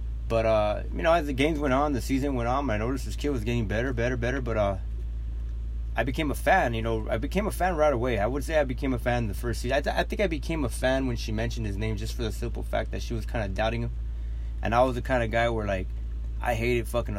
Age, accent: 20-39, American